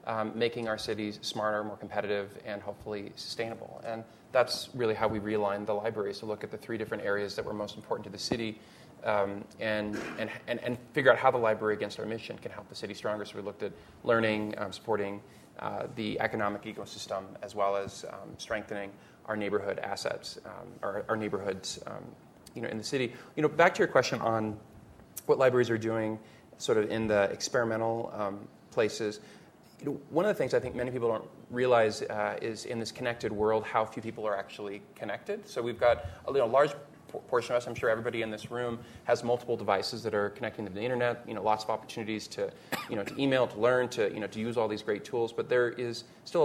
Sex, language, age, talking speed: male, English, 30-49, 215 wpm